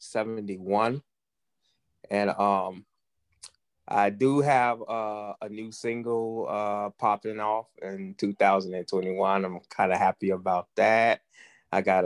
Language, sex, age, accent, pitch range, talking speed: English, male, 20-39, American, 100-115 Hz, 115 wpm